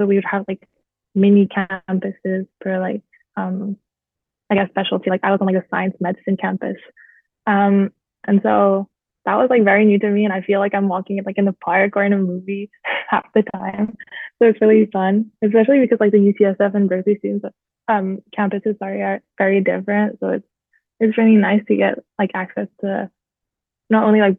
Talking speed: 200 wpm